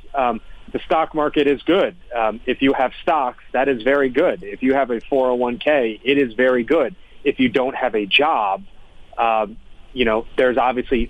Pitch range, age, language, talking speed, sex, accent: 110-125 Hz, 30-49, English, 190 wpm, male, American